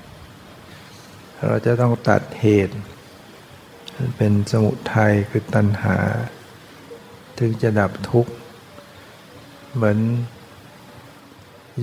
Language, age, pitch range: Thai, 60-79, 105-120 Hz